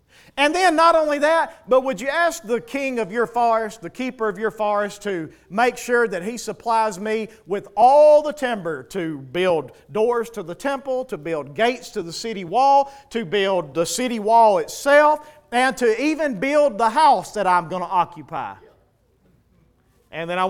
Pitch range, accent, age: 145-235 Hz, American, 40-59